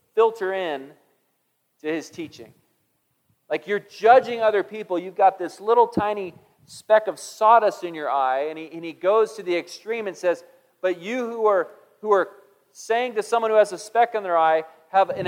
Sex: male